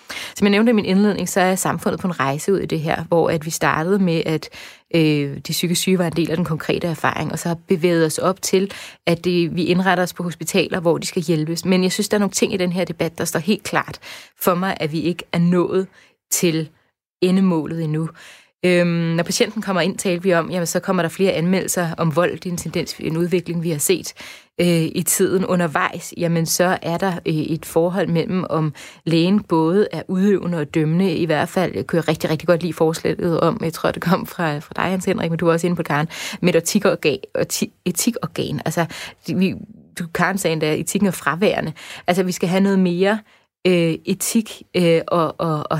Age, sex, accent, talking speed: 20-39, female, native, 210 wpm